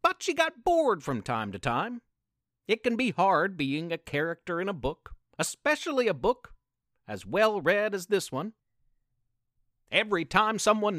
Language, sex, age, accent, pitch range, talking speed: English, male, 50-69, American, 140-220 Hz, 160 wpm